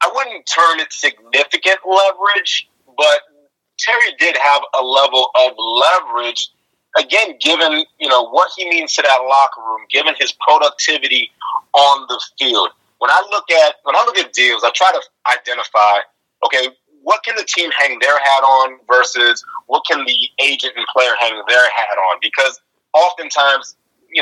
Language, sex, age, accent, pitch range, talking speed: English, male, 30-49, American, 130-190 Hz, 165 wpm